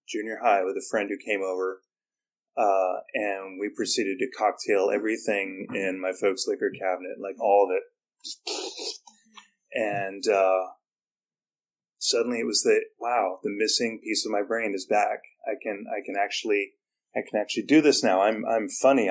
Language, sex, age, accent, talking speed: English, male, 30-49, American, 165 wpm